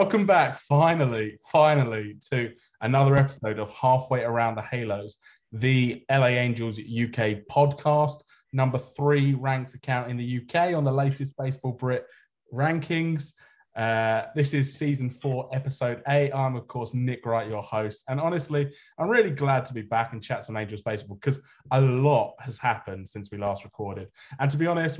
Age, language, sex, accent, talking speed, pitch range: 20-39, English, male, British, 170 wpm, 110-140 Hz